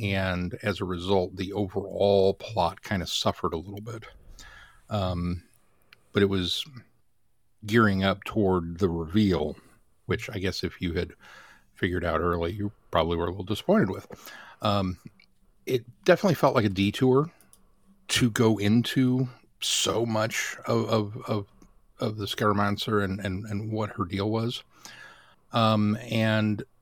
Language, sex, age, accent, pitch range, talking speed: English, male, 50-69, American, 95-115 Hz, 145 wpm